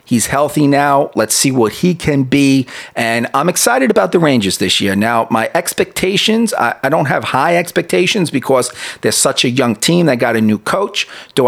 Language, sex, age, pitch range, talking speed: English, male, 40-59, 125-160 Hz, 200 wpm